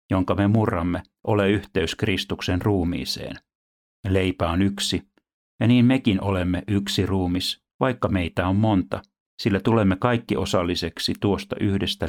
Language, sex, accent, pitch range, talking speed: Finnish, male, native, 85-105 Hz, 130 wpm